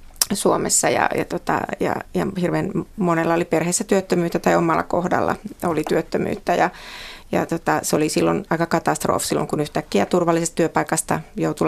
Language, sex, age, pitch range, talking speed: Finnish, female, 30-49, 160-185 Hz, 155 wpm